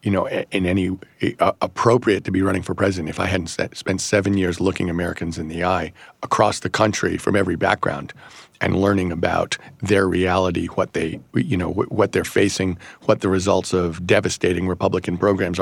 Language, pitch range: English, 95-110 Hz